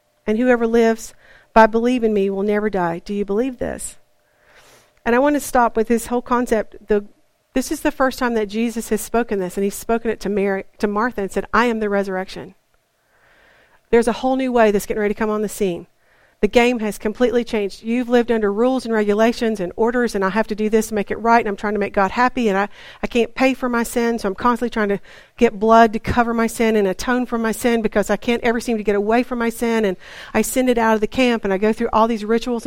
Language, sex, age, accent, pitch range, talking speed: English, female, 50-69, American, 210-240 Hz, 255 wpm